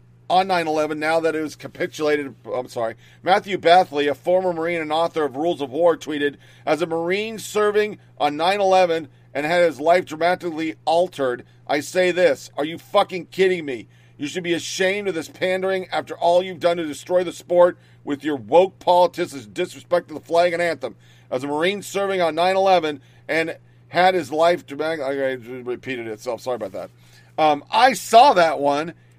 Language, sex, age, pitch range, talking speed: English, male, 40-59, 135-180 Hz, 190 wpm